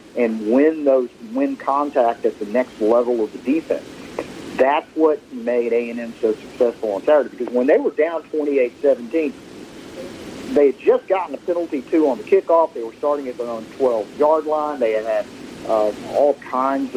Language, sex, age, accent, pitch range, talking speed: English, male, 50-69, American, 120-165 Hz, 175 wpm